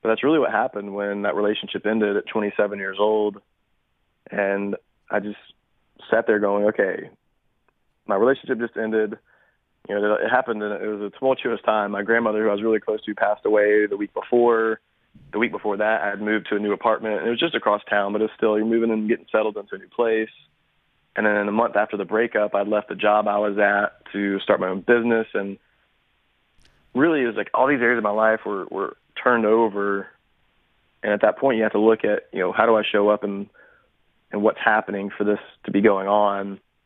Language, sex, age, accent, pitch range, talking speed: English, male, 30-49, American, 100-110 Hz, 225 wpm